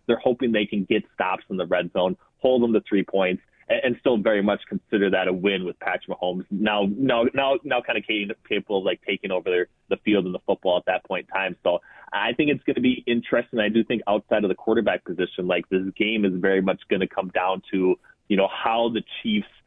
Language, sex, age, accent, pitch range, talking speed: English, male, 30-49, American, 95-110 Hz, 245 wpm